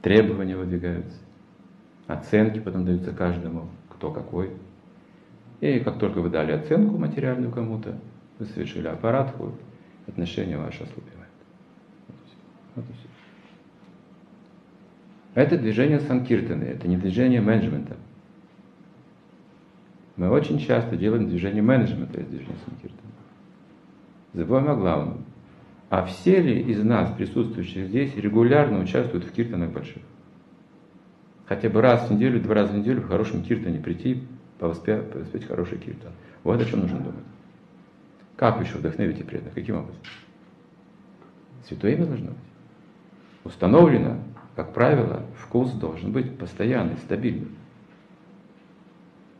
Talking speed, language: 120 wpm, Russian